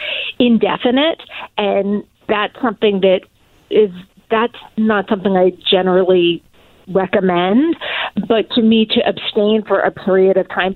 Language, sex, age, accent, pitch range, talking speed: English, female, 40-59, American, 185-220 Hz, 125 wpm